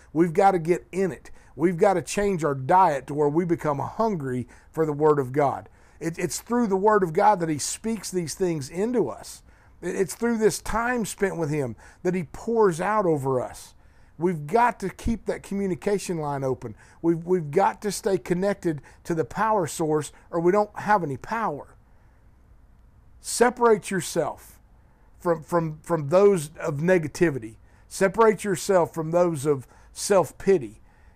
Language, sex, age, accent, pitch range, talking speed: English, male, 50-69, American, 150-195 Hz, 170 wpm